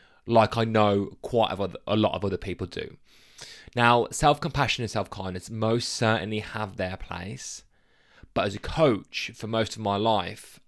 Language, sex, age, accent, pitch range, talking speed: English, male, 20-39, British, 95-130 Hz, 155 wpm